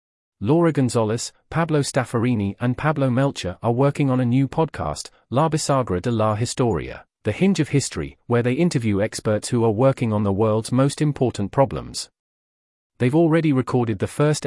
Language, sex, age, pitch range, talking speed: English, male, 40-59, 110-145 Hz, 165 wpm